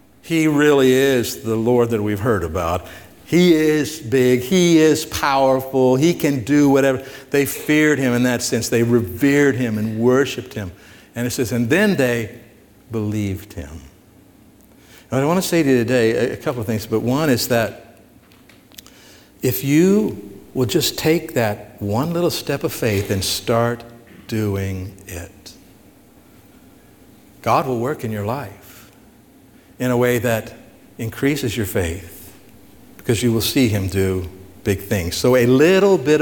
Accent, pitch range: American, 105-155 Hz